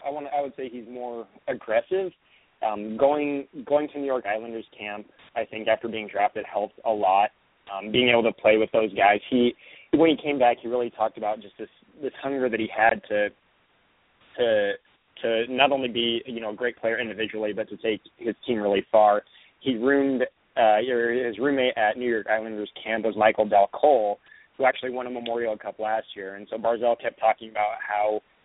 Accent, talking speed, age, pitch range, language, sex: American, 205 wpm, 20-39, 105-125 Hz, English, male